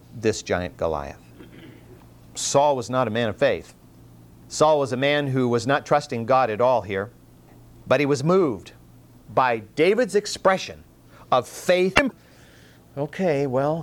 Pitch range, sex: 125-165 Hz, male